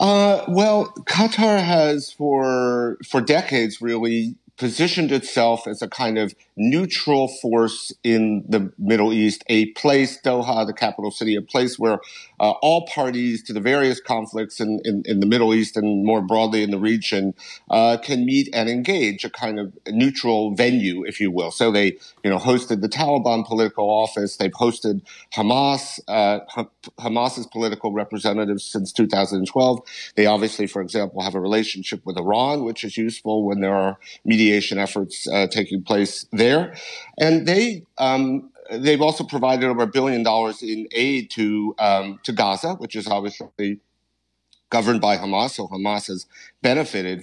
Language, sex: English, male